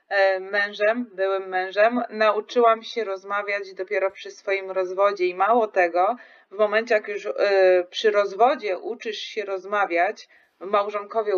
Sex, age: female, 20-39